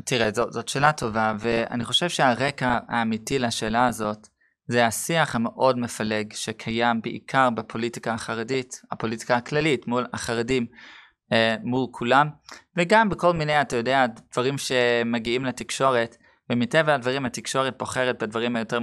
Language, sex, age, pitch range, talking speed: Hebrew, male, 20-39, 115-135 Hz, 130 wpm